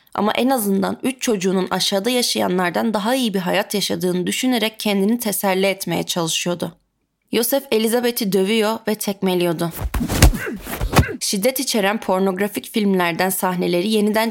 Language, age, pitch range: Turkish, 30-49, 185-235 Hz